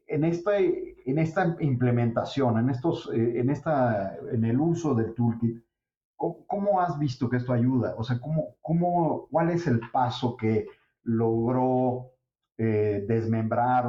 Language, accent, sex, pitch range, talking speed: English, Mexican, male, 110-130 Hz, 140 wpm